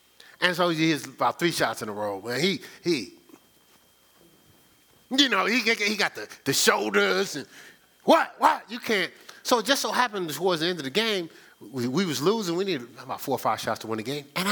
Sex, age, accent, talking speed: male, 30-49, American, 220 wpm